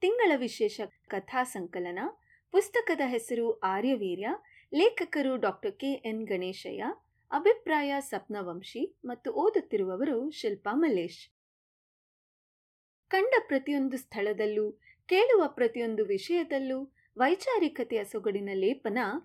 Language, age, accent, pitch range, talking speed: Kannada, 30-49, native, 215-355 Hz, 80 wpm